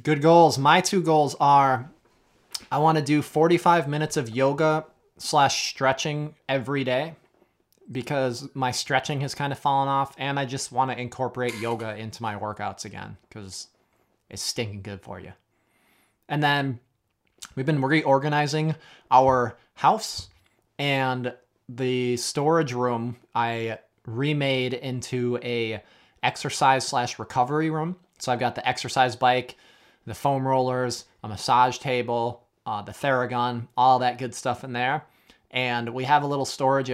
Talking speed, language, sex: 145 wpm, English, male